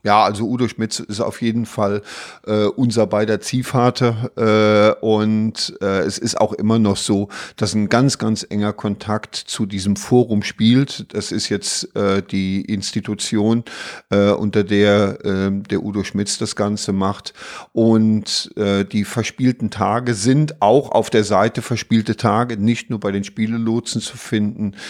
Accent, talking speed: German, 160 wpm